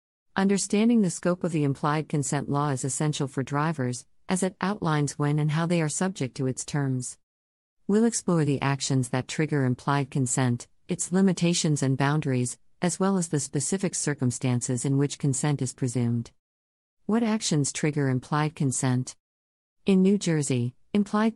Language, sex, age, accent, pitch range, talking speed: English, female, 50-69, American, 130-155 Hz, 155 wpm